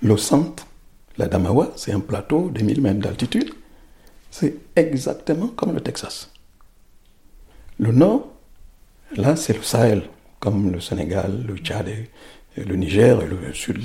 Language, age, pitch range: French, 60-79, 100-130 Hz